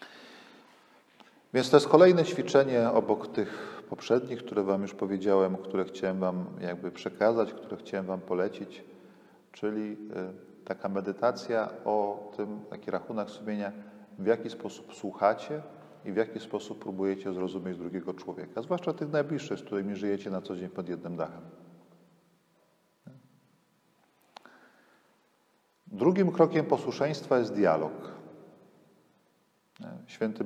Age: 40-59